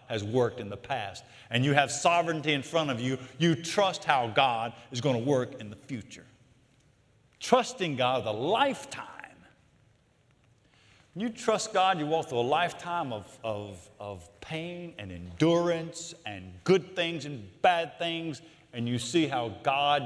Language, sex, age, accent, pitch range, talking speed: English, male, 50-69, American, 105-155 Hz, 160 wpm